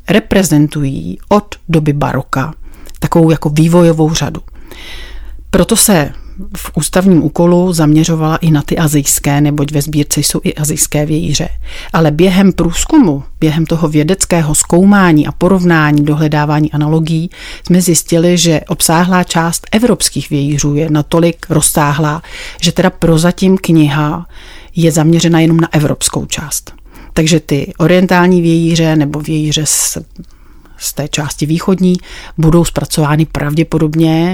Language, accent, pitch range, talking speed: Czech, native, 150-175 Hz, 120 wpm